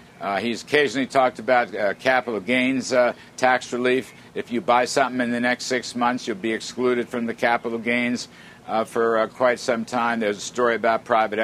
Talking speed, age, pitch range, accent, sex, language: 200 wpm, 60-79, 115-130 Hz, American, male, English